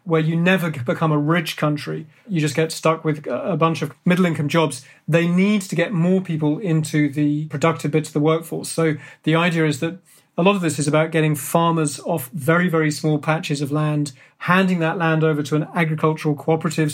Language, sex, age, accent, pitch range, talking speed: English, male, 40-59, British, 150-170 Hz, 205 wpm